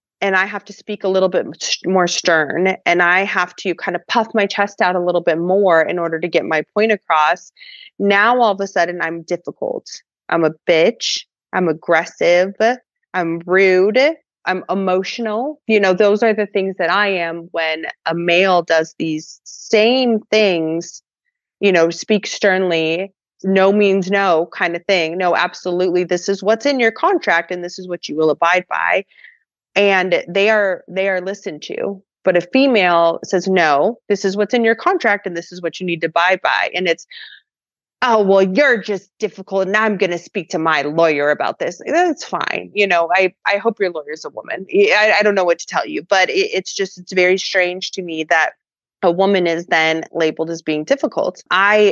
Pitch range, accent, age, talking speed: 170-205 Hz, American, 30-49, 200 wpm